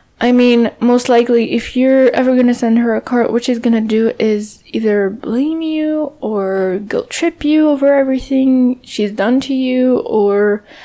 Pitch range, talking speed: 220-275 Hz, 185 wpm